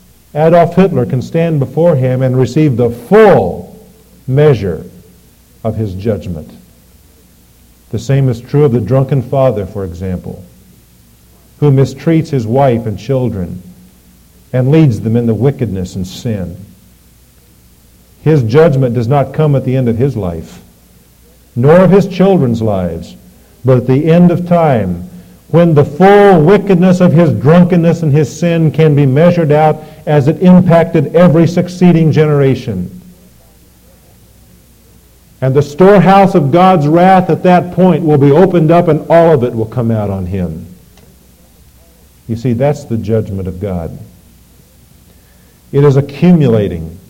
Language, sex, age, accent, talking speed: English, male, 50-69, American, 145 wpm